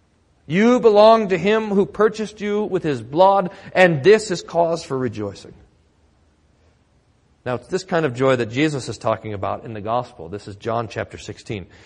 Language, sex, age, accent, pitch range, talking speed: English, male, 40-59, American, 115-185 Hz, 175 wpm